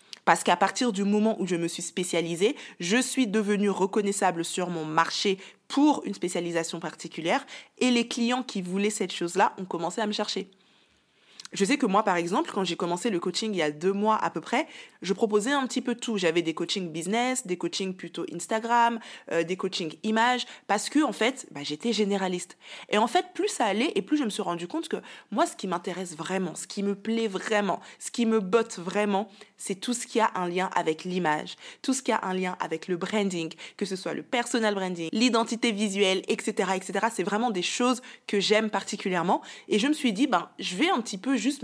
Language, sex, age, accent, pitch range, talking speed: French, female, 20-39, French, 185-240 Hz, 220 wpm